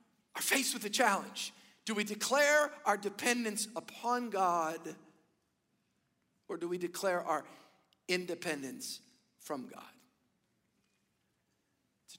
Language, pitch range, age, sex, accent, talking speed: English, 175-205 Hz, 50-69, male, American, 105 wpm